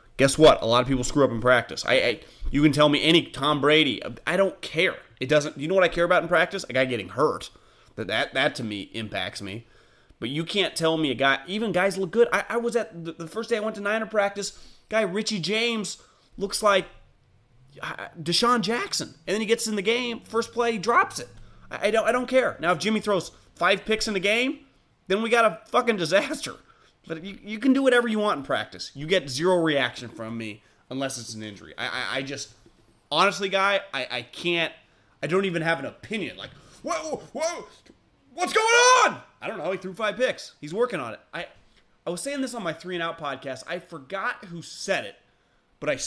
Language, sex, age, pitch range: English, male, 30-49, 140-215 Hz